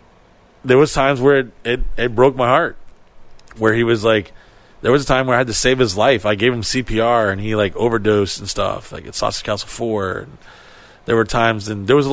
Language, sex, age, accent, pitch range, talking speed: English, male, 30-49, American, 105-125 Hz, 235 wpm